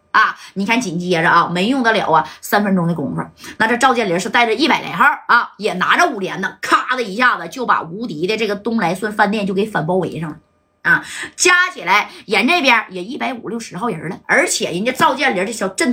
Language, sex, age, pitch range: Chinese, female, 20-39, 185-250 Hz